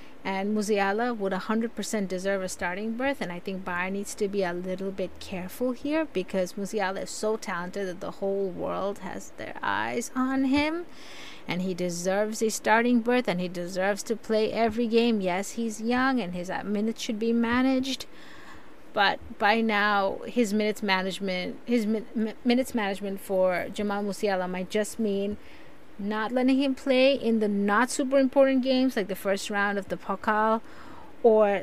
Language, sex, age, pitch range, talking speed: English, female, 30-49, 195-240 Hz, 175 wpm